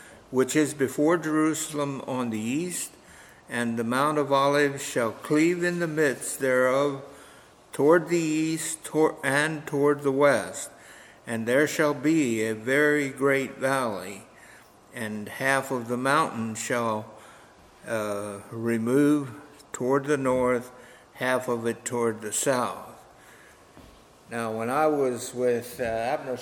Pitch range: 120-145 Hz